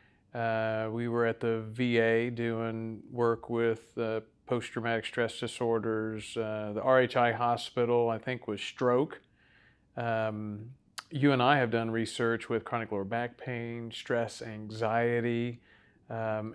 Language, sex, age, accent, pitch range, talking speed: English, male, 40-59, American, 110-120 Hz, 130 wpm